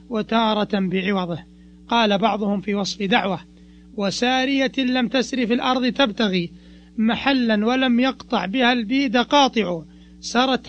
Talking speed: 110 wpm